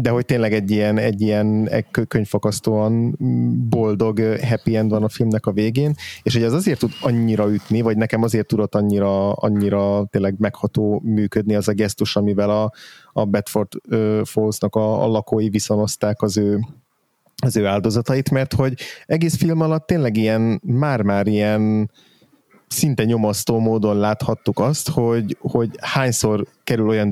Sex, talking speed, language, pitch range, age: male, 145 wpm, Hungarian, 100-115 Hz, 30-49